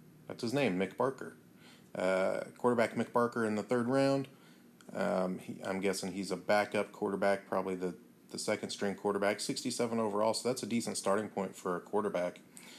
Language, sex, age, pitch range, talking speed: English, male, 30-49, 90-105 Hz, 170 wpm